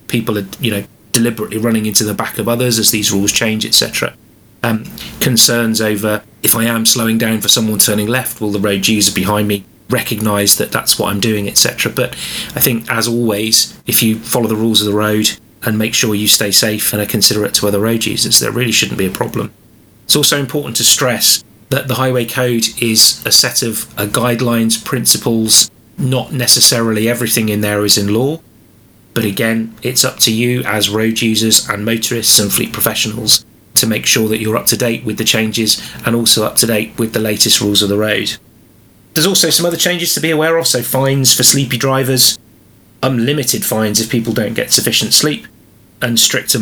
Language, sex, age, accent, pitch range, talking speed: English, male, 30-49, British, 105-120 Hz, 200 wpm